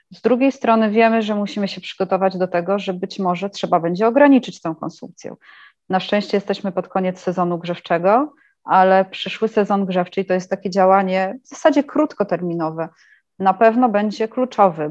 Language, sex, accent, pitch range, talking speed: Polish, female, native, 180-225 Hz, 160 wpm